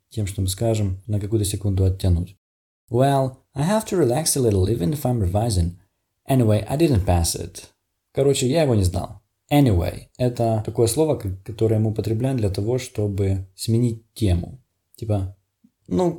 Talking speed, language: 105 wpm, Russian